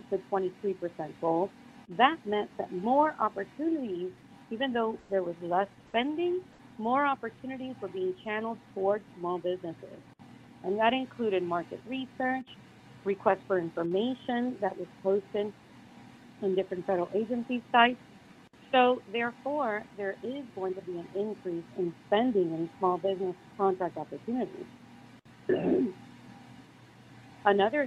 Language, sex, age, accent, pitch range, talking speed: English, female, 40-59, American, 185-245 Hz, 120 wpm